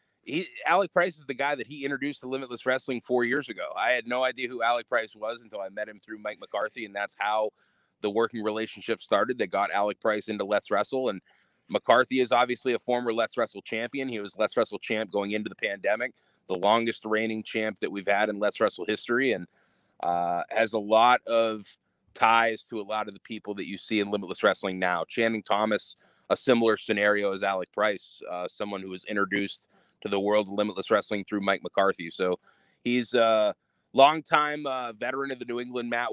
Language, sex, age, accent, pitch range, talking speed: English, male, 30-49, American, 100-120 Hz, 210 wpm